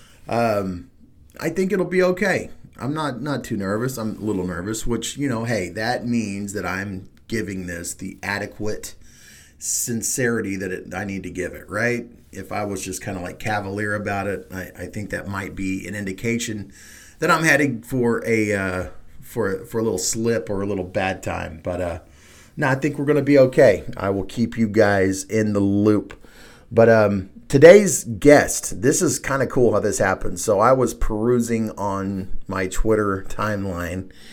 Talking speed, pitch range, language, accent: 185 wpm, 95-115 Hz, English, American